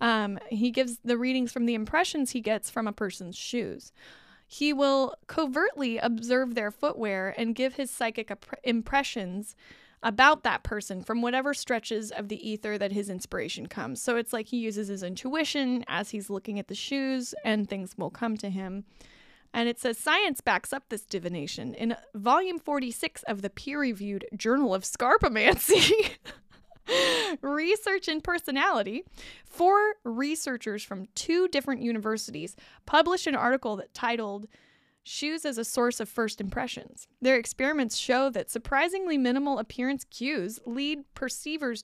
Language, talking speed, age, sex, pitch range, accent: English, 150 wpm, 20-39, female, 210-275 Hz, American